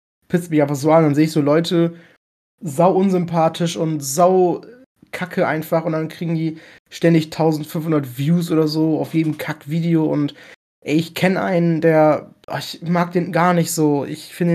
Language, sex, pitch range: German, male, 140-170 Hz